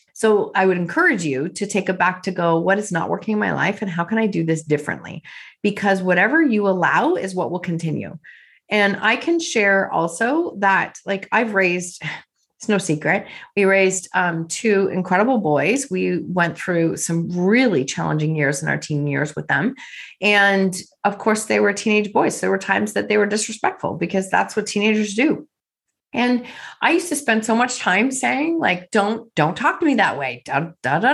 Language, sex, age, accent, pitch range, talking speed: English, female, 30-49, American, 180-230 Hz, 200 wpm